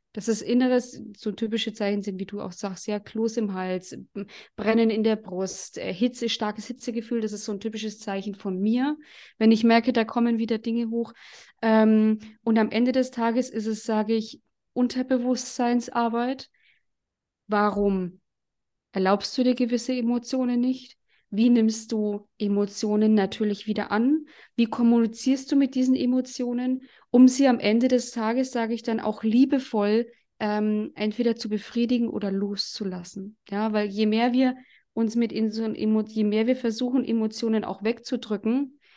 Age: 20-39